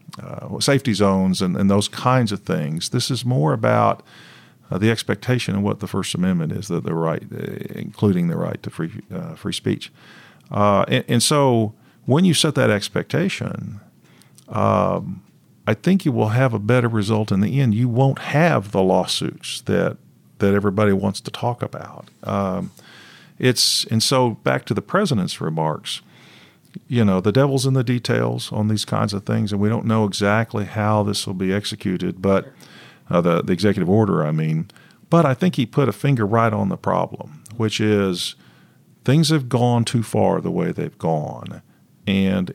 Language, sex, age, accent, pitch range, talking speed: English, male, 50-69, American, 100-135 Hz, 180 wpm